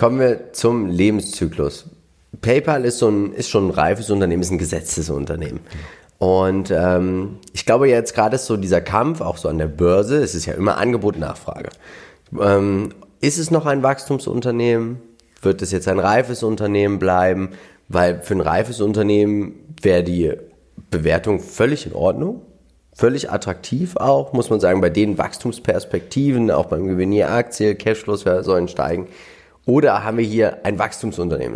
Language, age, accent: German, 30-49, German